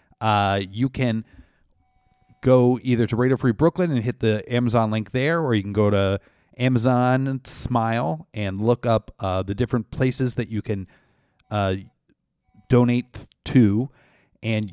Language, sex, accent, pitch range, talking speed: English, male, American, 105-130 Hz, 145 wpm